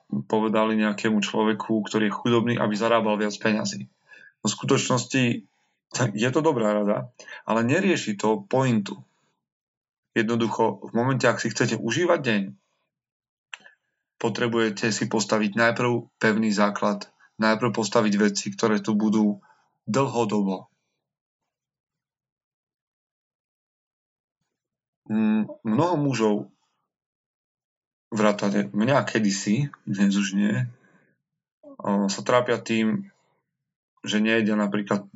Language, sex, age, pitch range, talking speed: Slovak, male, 30-49, 105-125 Hz, 95 wpm